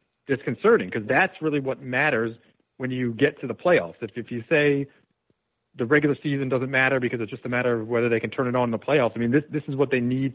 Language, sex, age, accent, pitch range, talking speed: English, male, 40-59, American, 120-140 Hz, 255 wpm